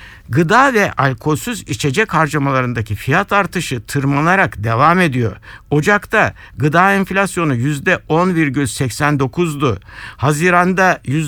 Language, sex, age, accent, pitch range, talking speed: Turkish, male, 60-79, native, 130-185 Hz, 80 wpm